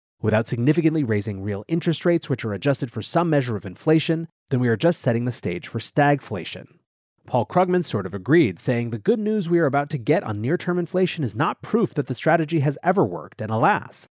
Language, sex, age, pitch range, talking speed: English, male, 30-49, 115-155 Hz, 215 wpm